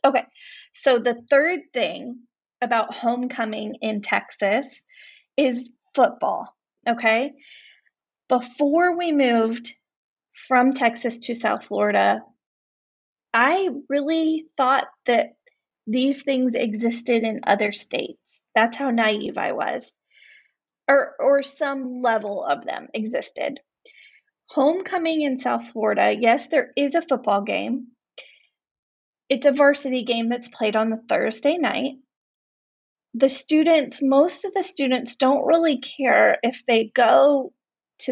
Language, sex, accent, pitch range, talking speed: English, female, American, 225-280 Hz, 120 wpm